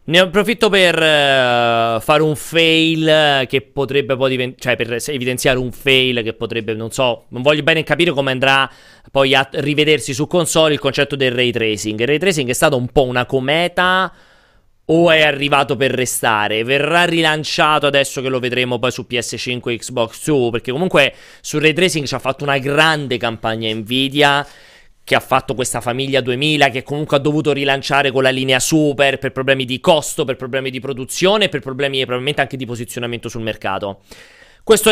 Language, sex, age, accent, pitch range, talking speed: Italian, male, 30-49, native, 125-155 Hz, 185 wpm